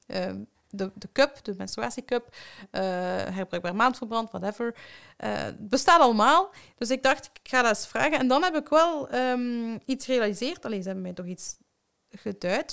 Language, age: Dutch, 30-49